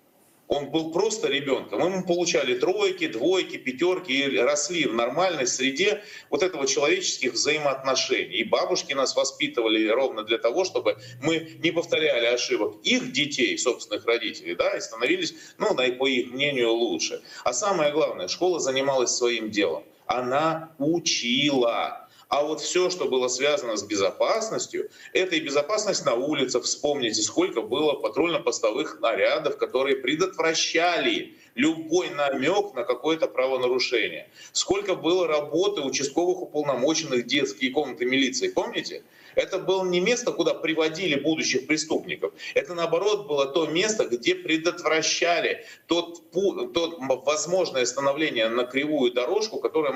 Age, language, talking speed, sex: 30-49, Russian, 130 wpm, male